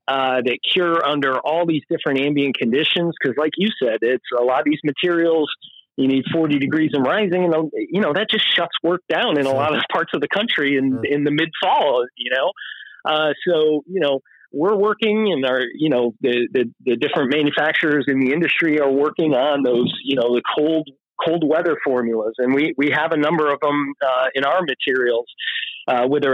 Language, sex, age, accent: English, male, 30-49, American